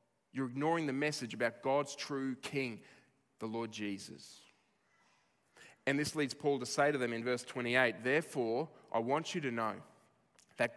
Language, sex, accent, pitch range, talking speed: English, male, Australian, 120-145 Hz, 160 wpm